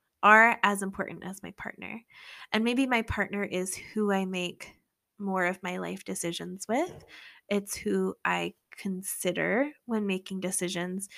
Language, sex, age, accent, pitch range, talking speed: English, female, 10-29, American, 180-220 Hz, 145 wpm